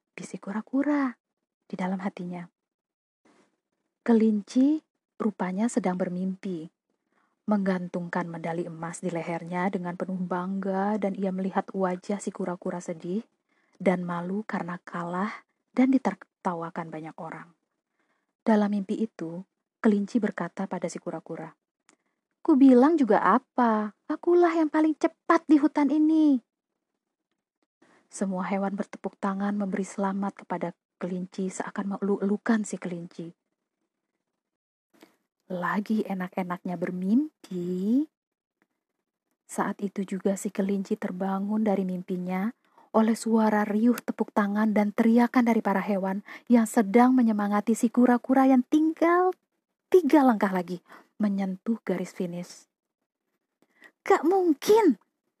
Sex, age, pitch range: female, 20-39, 185-240 Hz